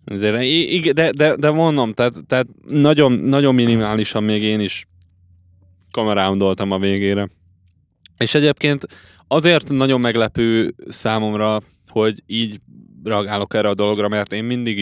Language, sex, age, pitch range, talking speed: Hungarian, male, 20-39, 95-130 Hz, 115 wpm